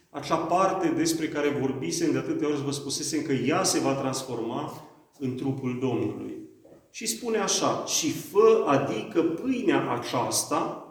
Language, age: Romanian, 40-59